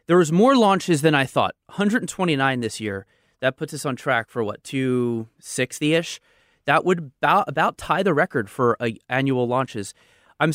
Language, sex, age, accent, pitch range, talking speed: English, male, 30-49, American, 125-155 Hz, 160 wpm